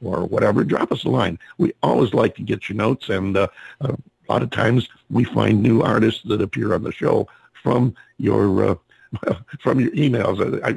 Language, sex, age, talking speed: English, male, 50-69, 195 wpm